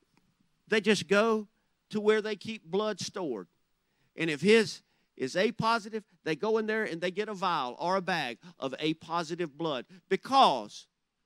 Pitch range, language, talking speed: 190-255 Hz, English, 160 wpm